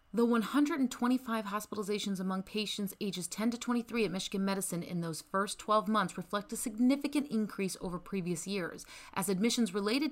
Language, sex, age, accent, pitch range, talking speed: English, female, 30-49, American, 170-235 Hz, 160 wpm